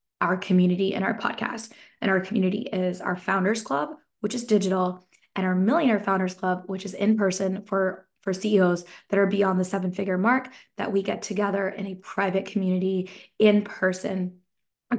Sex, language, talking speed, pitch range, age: female, English, 180 wpm, 190-220 Hz, 20-39